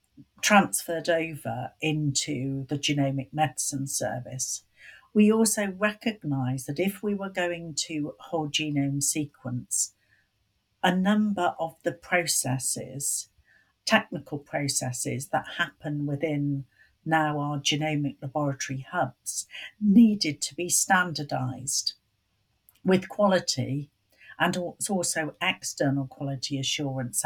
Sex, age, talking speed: female, 60-79, 100 wpm